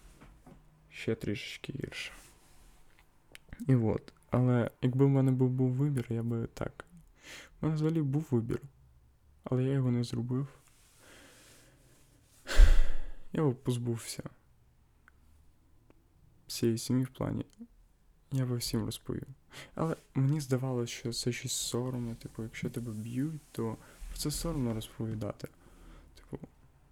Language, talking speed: Ukrainian, 120 wpm